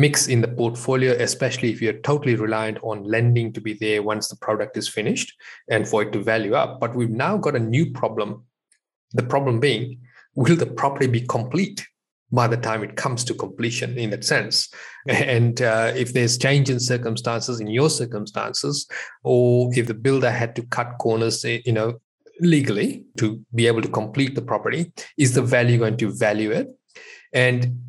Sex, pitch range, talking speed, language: male, 115-135 Hz, 185 wpm, English